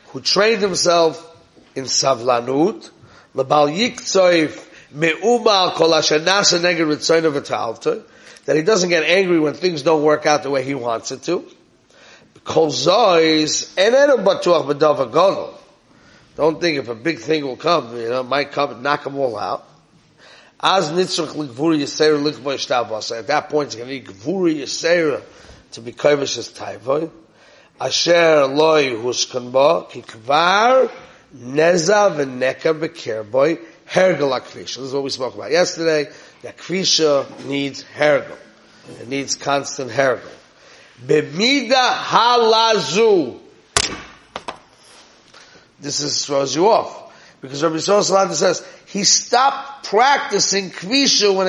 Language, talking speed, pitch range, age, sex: English, 100 wpm, 140-200 Hz, 30-49, male